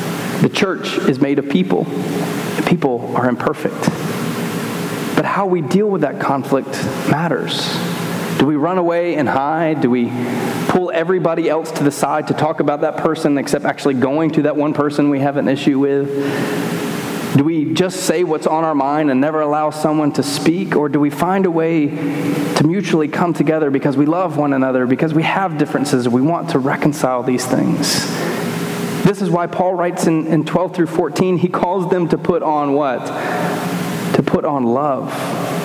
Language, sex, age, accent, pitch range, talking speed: English, male, 30-49, American, 140-170 Hz, 185 wpm